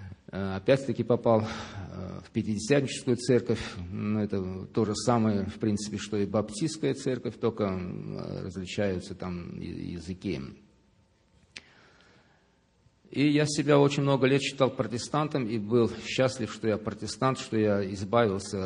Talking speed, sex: 120 wpm, male